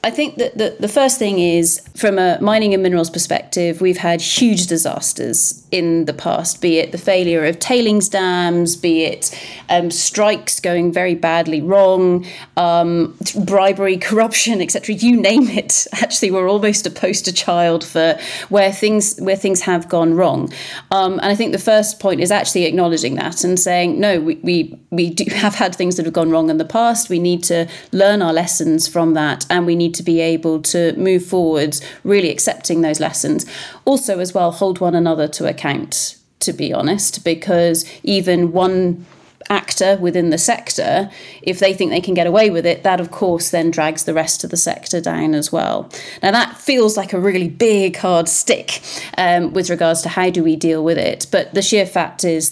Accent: British